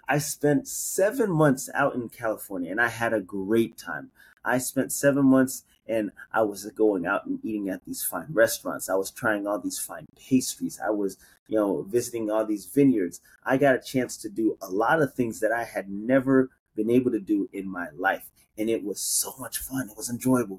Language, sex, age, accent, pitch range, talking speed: English, male, 30-49, American, 110-140 Hz, 215 wpm